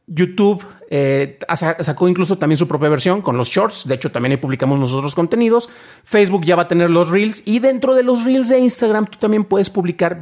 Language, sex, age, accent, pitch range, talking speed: Spanish, male, 40-59, Mexican, 160-205 Hz, 210 wpm